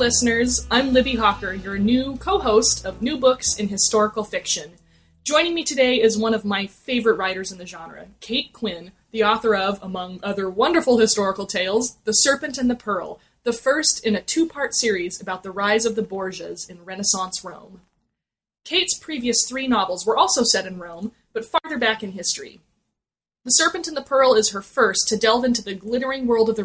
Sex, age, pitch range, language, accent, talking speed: female, 20-39, 195-250 Hz, English, American, 190 wpm